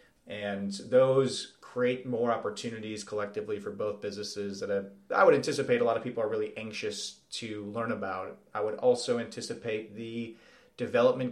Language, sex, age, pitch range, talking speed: English, male, 30-49, 105-125 Hz, 160 wpm